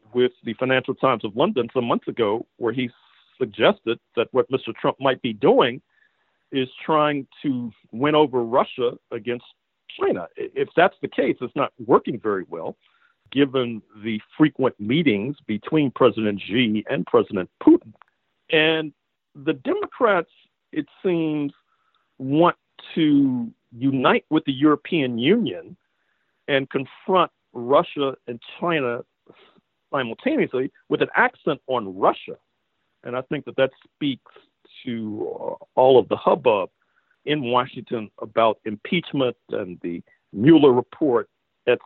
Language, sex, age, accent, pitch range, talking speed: English, male, 50-69, American, 125-190 Hz, 130 wpm